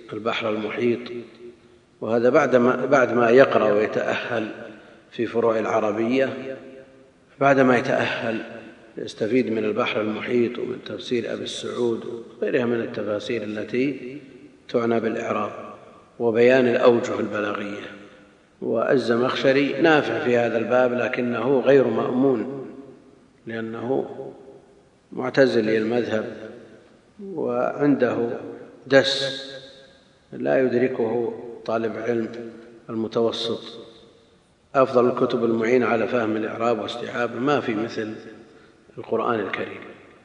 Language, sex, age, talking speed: Arabic, male, 50-69, 90 wpm